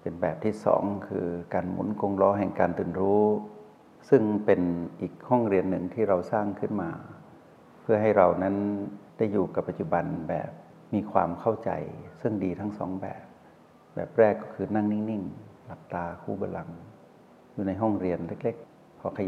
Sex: male